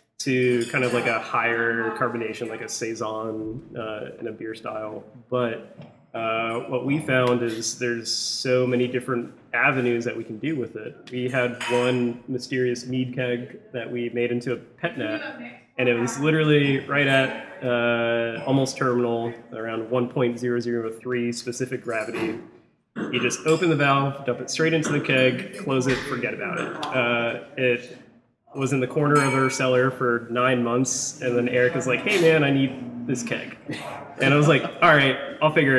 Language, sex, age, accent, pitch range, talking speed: English, male, 20-39, American, 115-130 Hz, 175 wpm